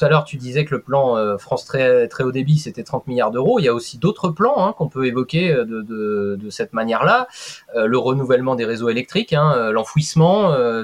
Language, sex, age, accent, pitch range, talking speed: French, male, 30-49, French, 115-155 Hz, 225 wpm